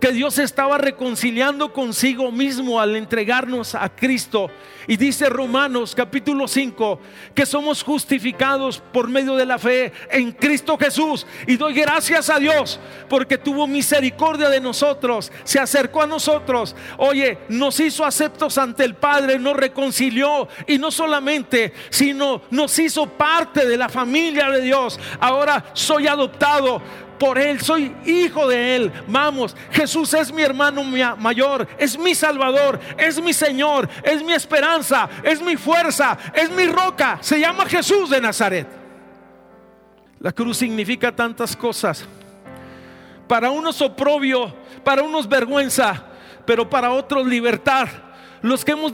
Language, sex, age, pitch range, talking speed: Spanish, male, 50-69, 245-295 Hz, 140 wpm